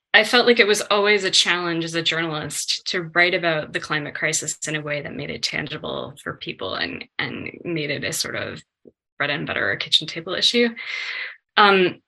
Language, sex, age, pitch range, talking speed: English, female, 20-39, 155-210 Hz, 200 wpm